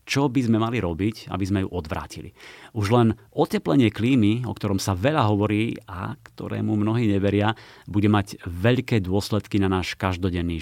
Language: Slovak